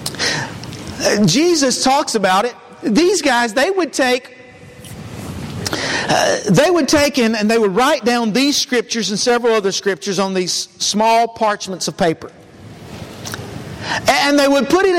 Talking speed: 145 wpm